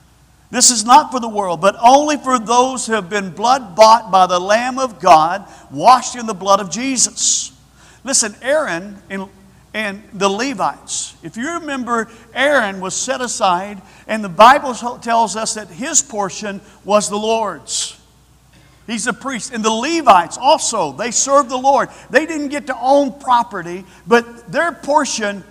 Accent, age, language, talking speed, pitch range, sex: American, 50-69, English, 165 wpm, 205-265 Hz, male